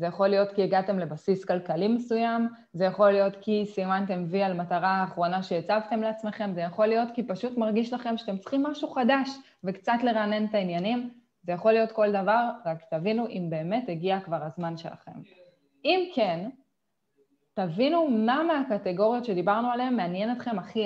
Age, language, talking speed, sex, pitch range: 20-39, Hebrew, 165 wpm, female, 180-230 Hz